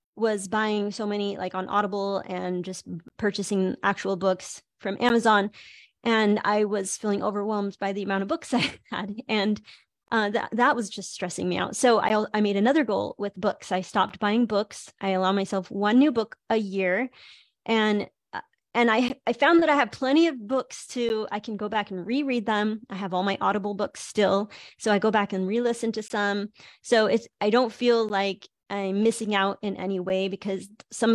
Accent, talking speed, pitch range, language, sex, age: American, 200 wpm, 195-230 Hz, English, female, 30-49